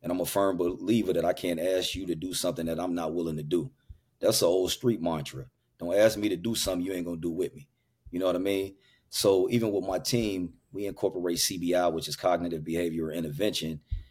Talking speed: 235 wpm